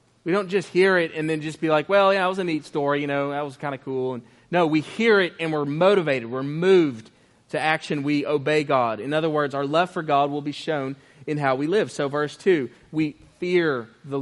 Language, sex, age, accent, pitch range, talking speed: English, male, 30-49, American, 145-180 Hz, 250 wpm